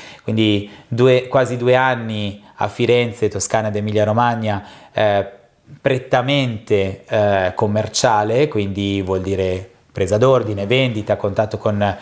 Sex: male